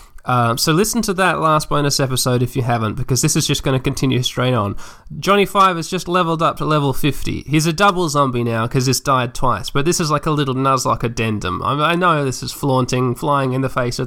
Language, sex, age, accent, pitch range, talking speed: English, male, 20-39, Australian, 125-165 Hz, 250 wpm